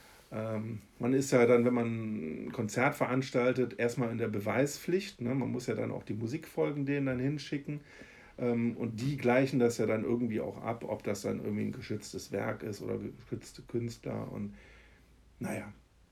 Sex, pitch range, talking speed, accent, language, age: male, 110-130 Hz, 180 wpm, German, German, 50-69